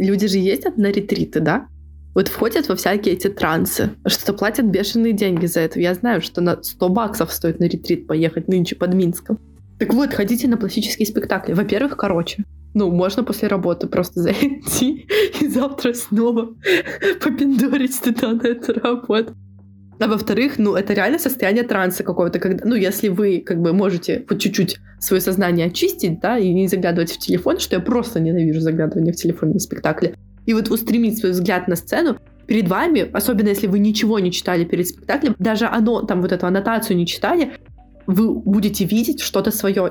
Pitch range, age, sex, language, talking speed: 180-225 Hz, 20-39, female, Russian, 175 wpm